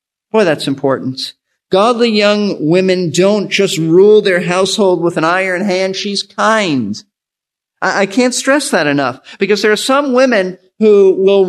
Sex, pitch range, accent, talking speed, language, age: male, 185-230 Hz, American, 155 wpm, English, 50-69